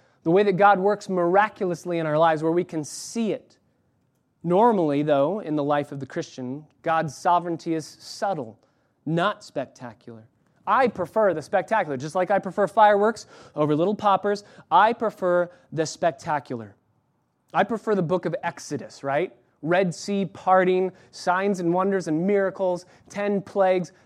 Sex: male